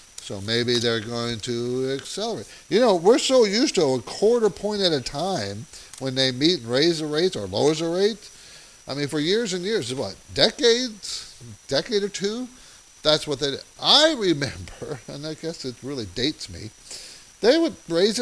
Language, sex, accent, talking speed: English, male, American, 185 wpm